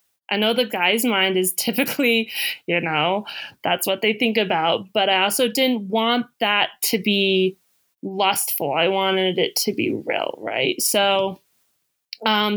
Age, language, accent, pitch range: 20-39, English, American, 175-230 Hz